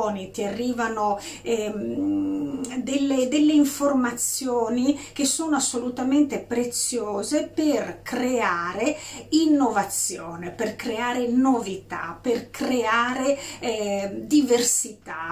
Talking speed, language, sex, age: 80 wpm, Italian, female, 40-59